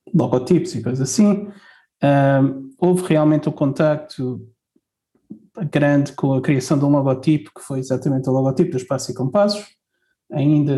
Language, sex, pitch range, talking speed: Portuguese, male, 130-150 Hz, 145 wpm